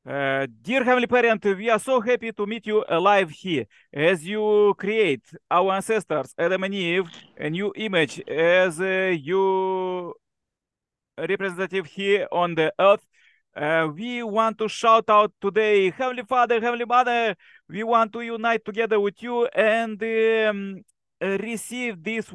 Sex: male